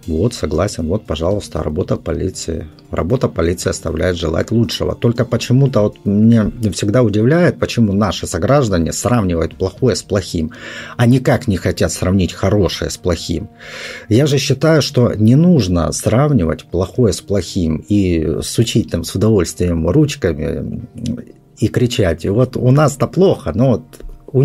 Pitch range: 85-120 Hz